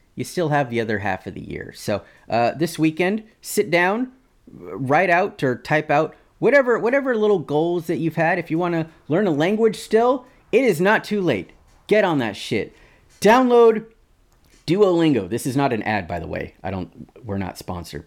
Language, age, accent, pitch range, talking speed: English, 30-49, American, 105-170 Hz, 195 wpm